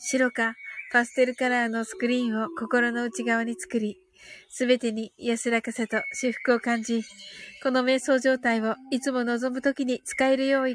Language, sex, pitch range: Japanese, female, 235-330 Hz